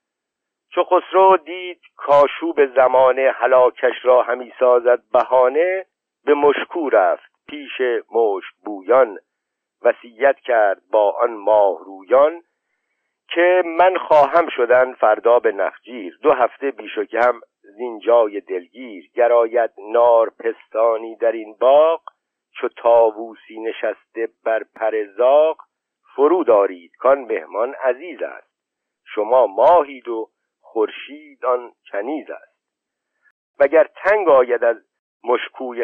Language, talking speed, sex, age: Persian, 105 wpm, male, 50-69